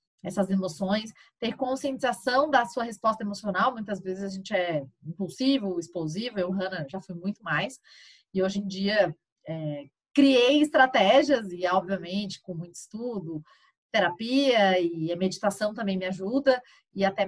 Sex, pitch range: female, 185-240 Hz